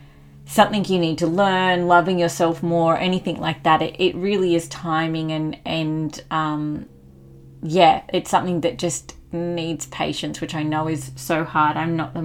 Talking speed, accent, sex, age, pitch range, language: 170 wpm, Australian, female, 30-49, 155-185 Hz, English